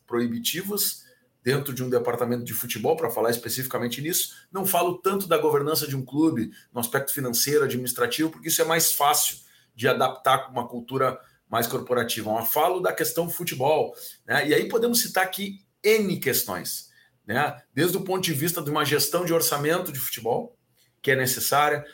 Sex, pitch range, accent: male, 125-175 Hz, Brazilian